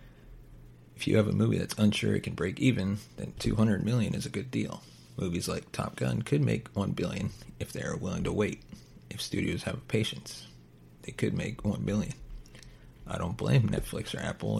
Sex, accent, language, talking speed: male, American, English, 195 wpm